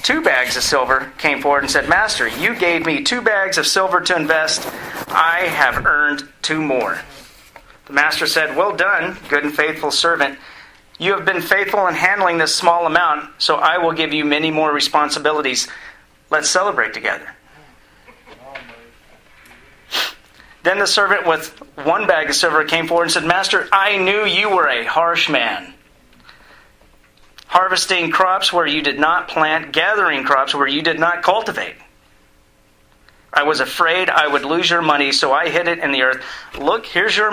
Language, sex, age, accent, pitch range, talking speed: English, male, 40-59, American, 145-180 Hz, 165 wpm